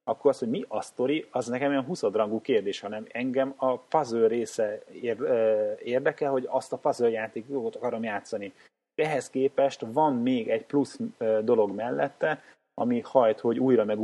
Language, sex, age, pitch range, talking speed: Hungarian, male, 30-49, 110-140 Hz, 160 wpm